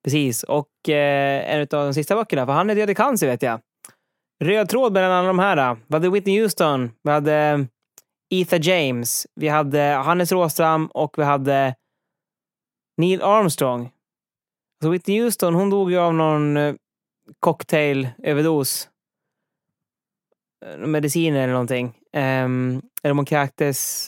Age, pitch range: 20-39, 140-180 Hz